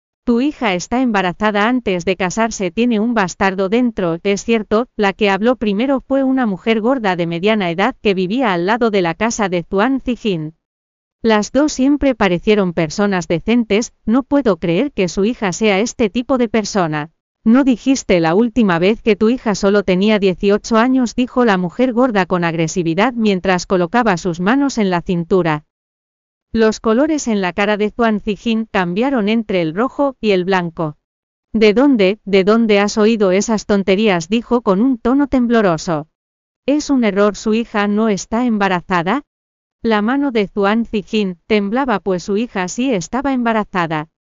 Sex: female